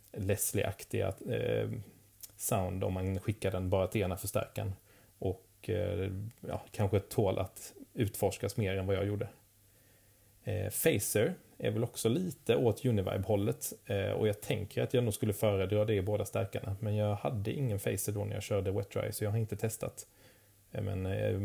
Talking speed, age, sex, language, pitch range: 160 wpm, 30-49, male, Swedish, 100-110 Hz